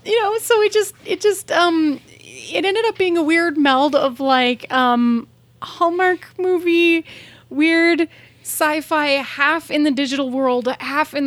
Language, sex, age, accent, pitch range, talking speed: English, female, 30-49, American, 225-285 Hz, 155 wpm